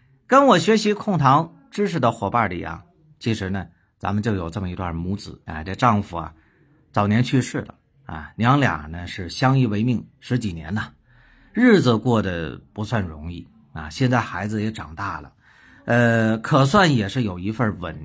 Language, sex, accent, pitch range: Chinese, male, native, 100-140 Hz